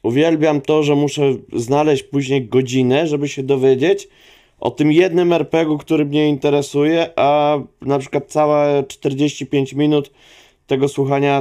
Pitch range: 115-145 Hz